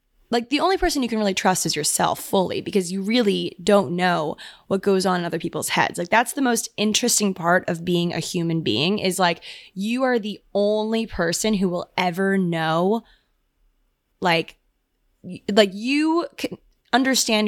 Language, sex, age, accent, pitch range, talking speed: English, female, 20-39, American, 180-230 Hz, 170 wpm